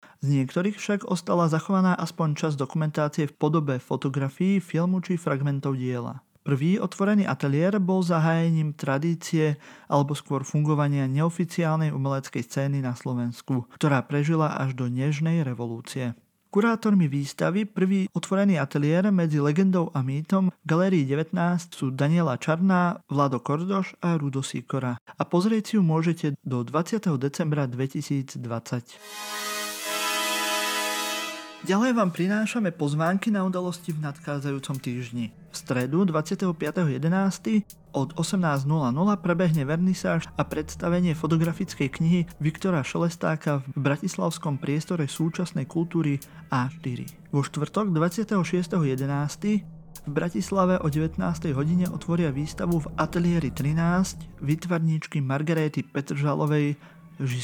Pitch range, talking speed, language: 145-180 Hz, 110 wpm, Slovak